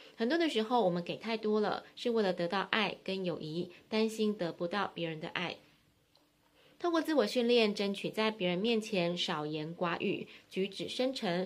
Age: 20-39